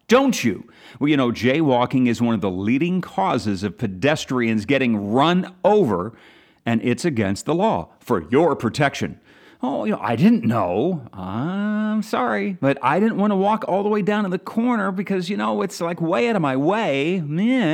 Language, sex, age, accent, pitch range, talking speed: English, male, 40-59, American, 125-195 Hz, 190 wpm